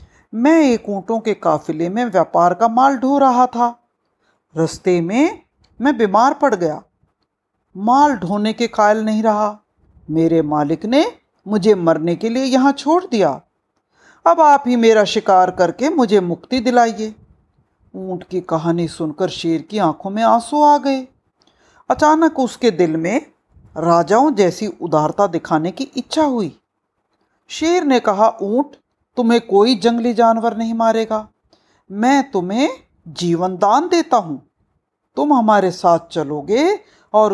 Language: Hindi